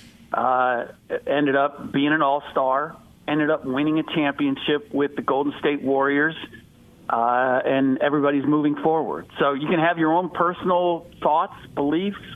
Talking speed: 145 wpm